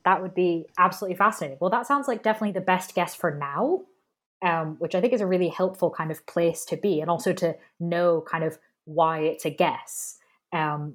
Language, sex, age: English, female, 20-39